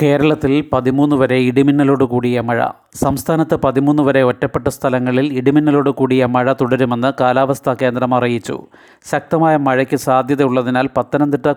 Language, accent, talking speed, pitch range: Malayalam, native, 115 wpm, 125-140 Hz